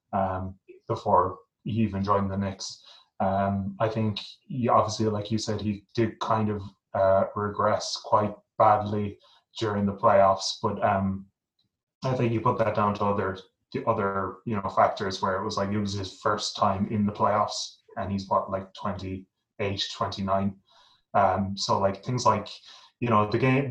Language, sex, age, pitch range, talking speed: English, male, 20-39, 100-110 Hz, 175 wpm